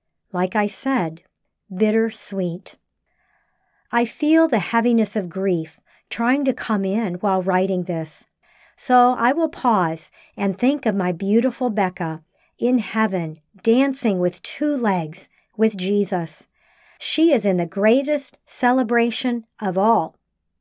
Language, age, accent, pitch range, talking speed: English, 50-69, American, 185-240 Hz, 125 wpm